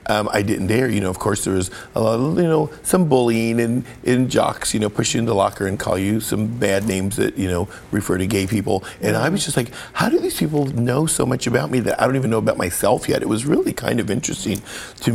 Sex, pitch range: male, 95-120 Hz